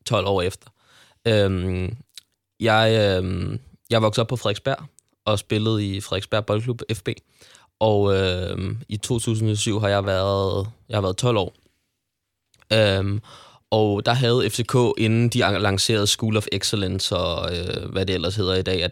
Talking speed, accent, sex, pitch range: 150 wpm, native, male, 95-115 Hz